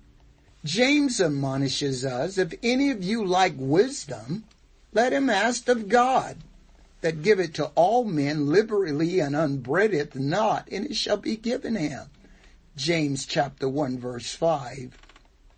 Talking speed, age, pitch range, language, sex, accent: 135 wpm, 60-79, 145-200 Hz, English, male, American